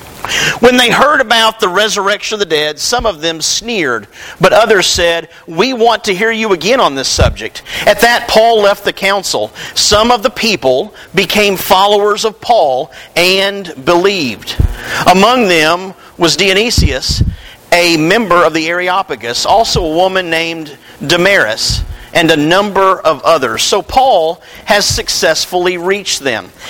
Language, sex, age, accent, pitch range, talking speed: English, male, 50-69, American, 155-210 Hz, 150 wpm